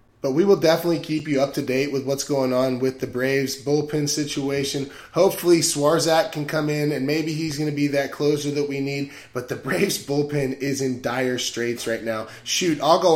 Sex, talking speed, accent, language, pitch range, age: male, 215 wpm, American, English, 135-165 Hz, 20-39